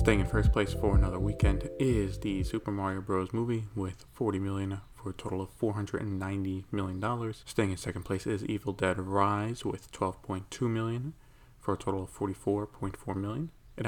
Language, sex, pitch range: English, male, 95-120 Hz